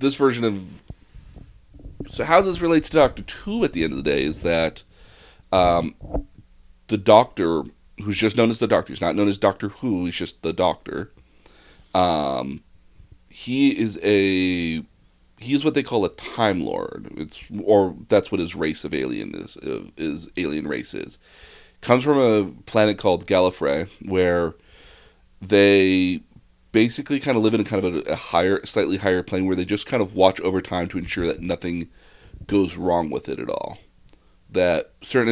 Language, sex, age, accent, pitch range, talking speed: English, male, 30-49, American, 85-110 Hz, 175 wpm